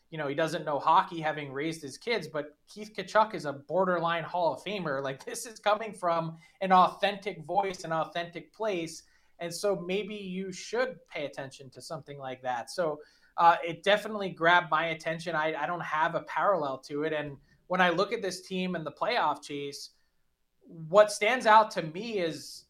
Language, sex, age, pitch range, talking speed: English, male, 20-39, 155-190 Hz, 195 wpm